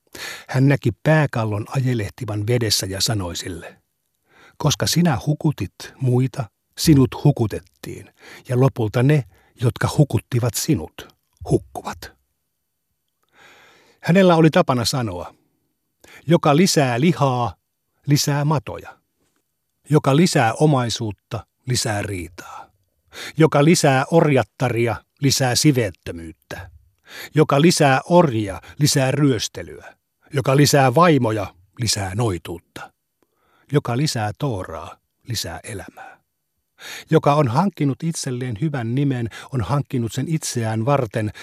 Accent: native